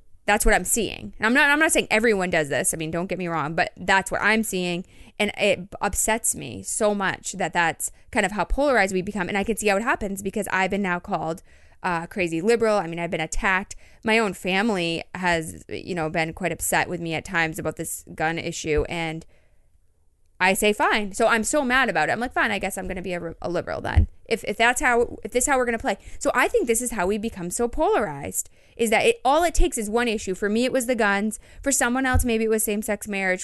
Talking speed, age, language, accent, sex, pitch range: 255 wpm, 20-39, English, American, female, 180-225 Hz